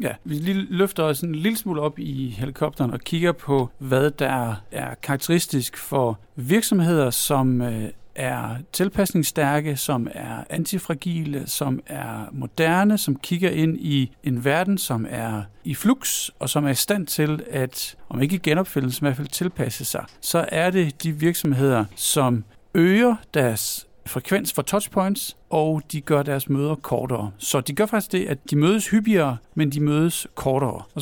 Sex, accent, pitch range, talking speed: male, native, 130-170 Hz, 160 wpm